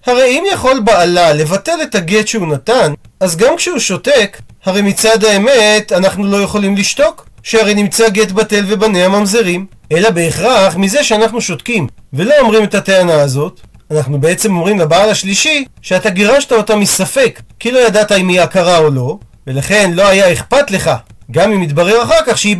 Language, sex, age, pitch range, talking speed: Hebrew, male, 40-59, 170-230 Hz, 170 wpm